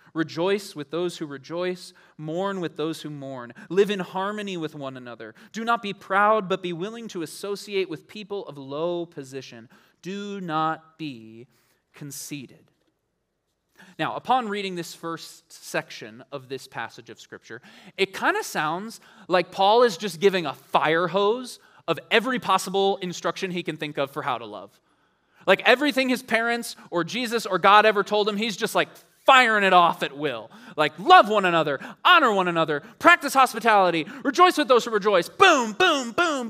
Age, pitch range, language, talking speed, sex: 20-39, 160-225 Hz, English, 175 wpm, male